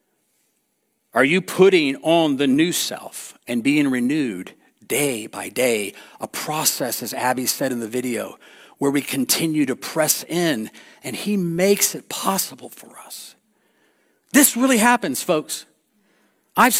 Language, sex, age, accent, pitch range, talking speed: English, male, 50-69, American, 160-250 Hz, 140 wpm